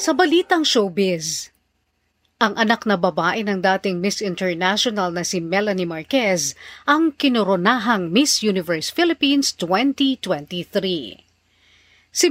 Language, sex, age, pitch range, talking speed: Filipino, female, 40-59, 185-255 Hz, 105 wpm